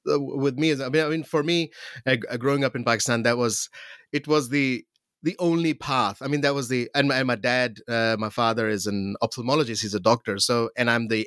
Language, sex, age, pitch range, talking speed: English, male, 30-49, 110-145 Hz, 235 wpm